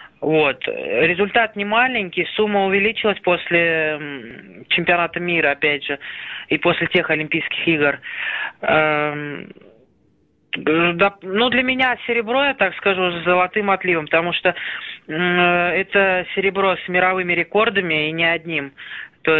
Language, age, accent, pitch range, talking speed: Russian, 20-39, native, 155-185 Hz, 125 wpm